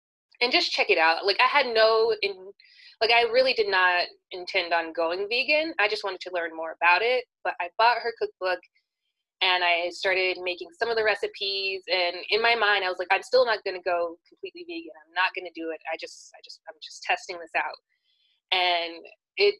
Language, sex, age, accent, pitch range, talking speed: English, female, 20-39, American, 175-285 Hz, 215 wpm